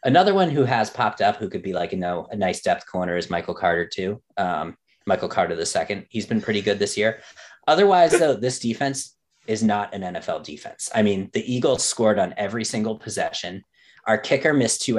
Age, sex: 30-49, male